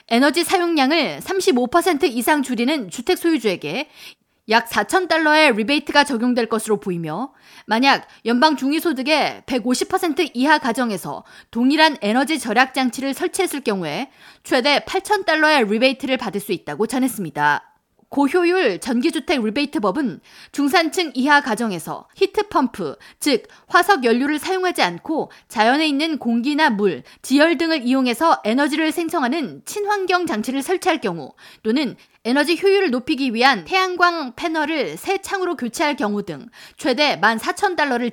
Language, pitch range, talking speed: English, 235-335 Hz, 110 wpm